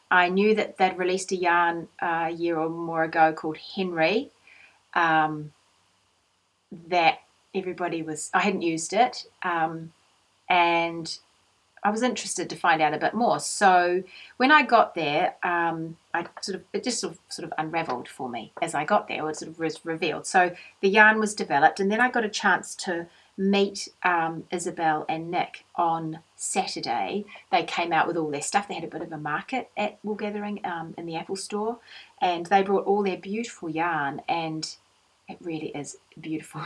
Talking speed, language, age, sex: 185 wpm, English, 30-49, female